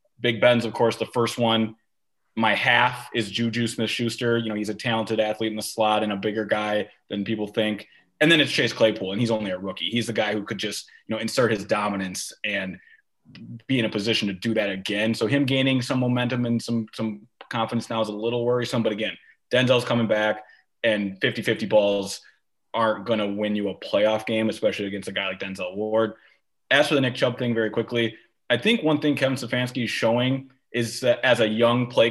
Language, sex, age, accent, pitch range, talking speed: English, male, 20-39, American, 110-125 Hz, 220 wpm